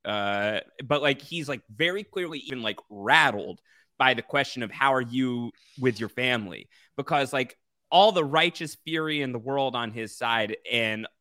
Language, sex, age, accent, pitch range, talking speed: English, male, 20-39, American, 110-140 Hz, 175 wpm